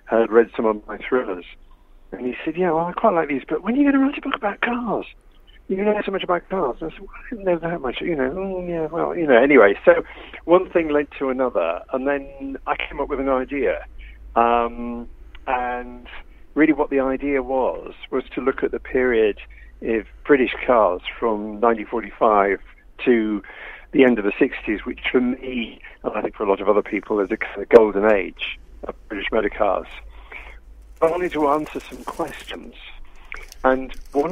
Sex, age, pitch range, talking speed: male, 50-69, 110-175 Hz, 200 wpm